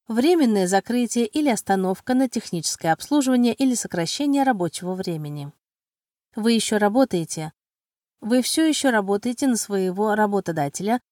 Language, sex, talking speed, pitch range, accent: Russian, female, 115 wpm, 180-250 Hz, native